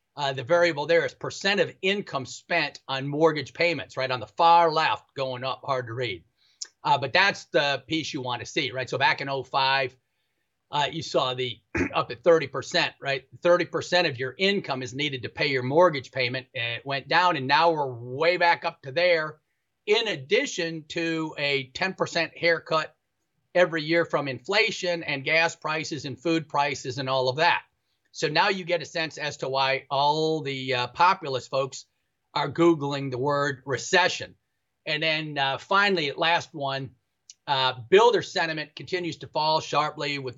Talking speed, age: 175 wpm, 40-59